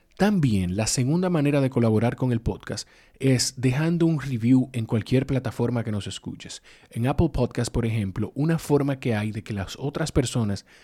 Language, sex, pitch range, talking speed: Spanish, male, 115-145 Hz, 185 wpm